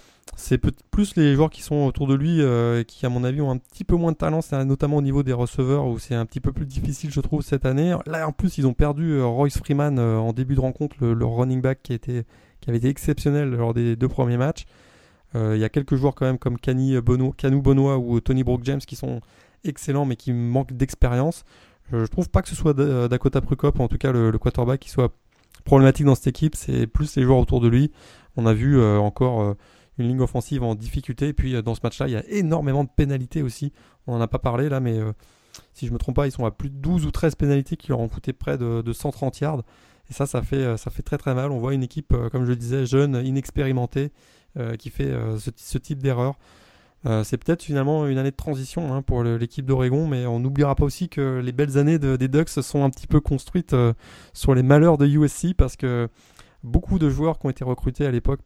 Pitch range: 125-145 Hz